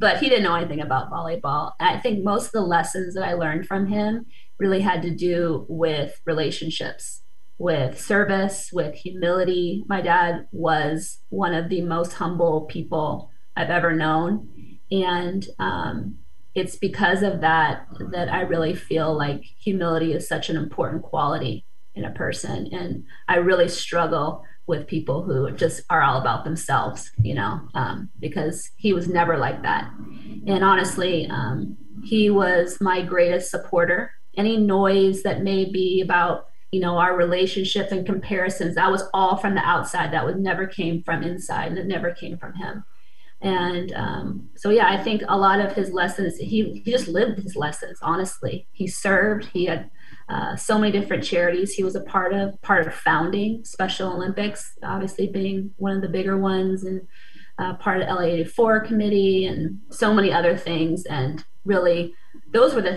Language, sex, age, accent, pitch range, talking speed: English, female, 30-49, American, 170-195 Hz, 170 wpm